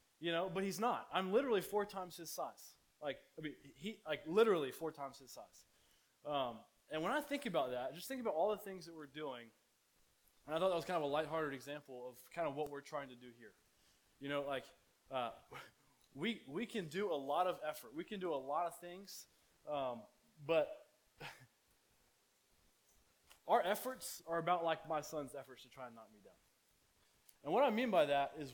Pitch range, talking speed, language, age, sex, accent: 150-210 Hz, 205 wpm, English, 20-39, male, American